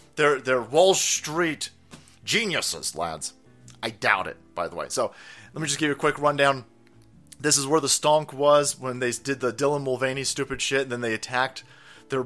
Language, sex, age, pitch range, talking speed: English, male, 30-49, 130-170 Hz, 195 wpm